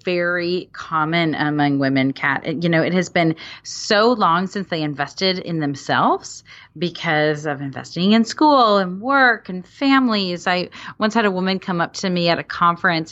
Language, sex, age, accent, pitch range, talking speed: English, female, 30-49, American, 165-210 Hz, 175 wpm